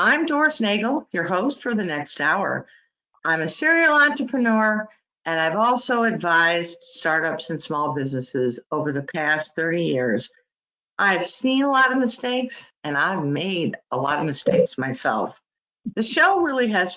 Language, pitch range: English, 160-260 Hz